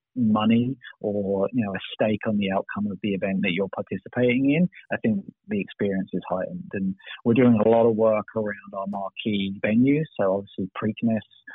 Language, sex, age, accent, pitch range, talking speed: English, male, 30-49, British, 105-140 Hz, 185 wpm